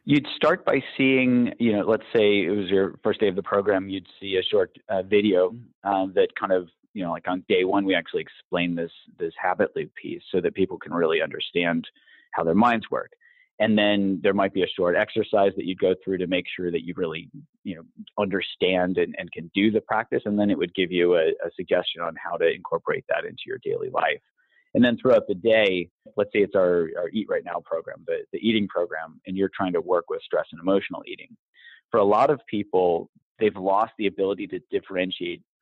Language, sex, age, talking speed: English, male, 30-49, 225 wpm